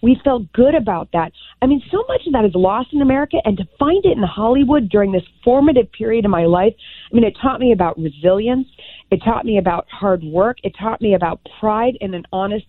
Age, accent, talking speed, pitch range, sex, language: 40-59, American, 230 wpm, 170-220 Hz, female, English